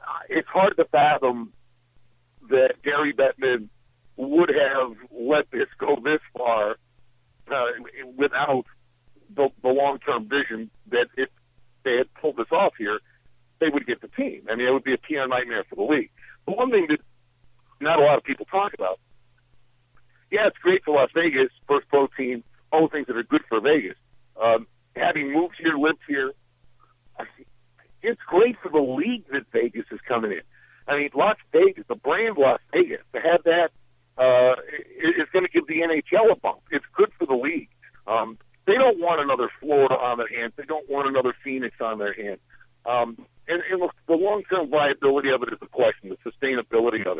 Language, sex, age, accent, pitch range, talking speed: English, male, 60-79, American, 120-175 Hz, 185 wpm